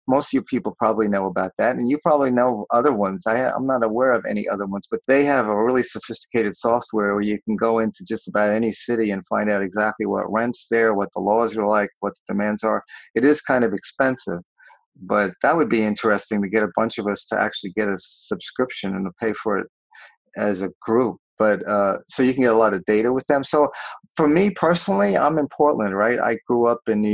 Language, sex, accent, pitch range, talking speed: English, male, American, 105-125 Hz, 235 wpm